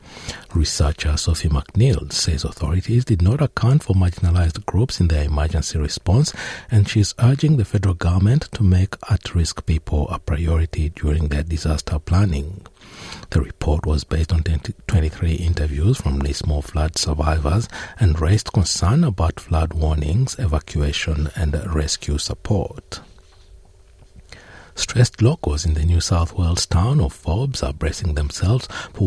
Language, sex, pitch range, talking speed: English, male, 75-95 Hz, 140 wpm